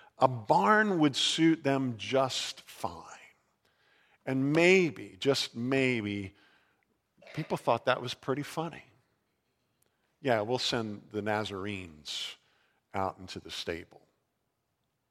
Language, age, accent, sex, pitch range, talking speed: English, 50-69, American, male, 125-180 Hz, 105 wpm